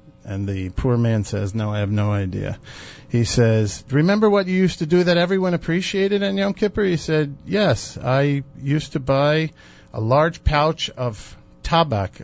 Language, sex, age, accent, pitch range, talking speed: English, male, 50-69, American, 110-155 Hz, 175 wpm